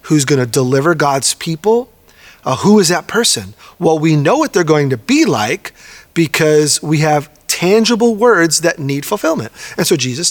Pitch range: 140-190 Hz